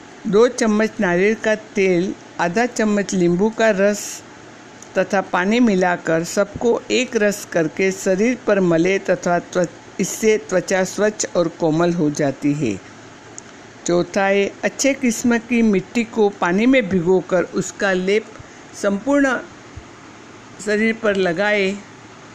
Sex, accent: female, native